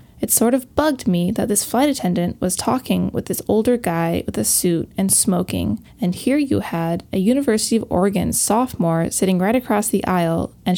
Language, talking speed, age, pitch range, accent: English, 195 wpm, 20-39, 175-225 Hz, American